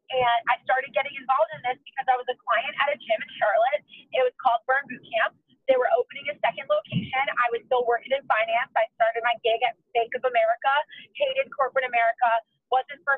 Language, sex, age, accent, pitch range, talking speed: English, female, 30-49, American, 235-320 Hz, 220 wpm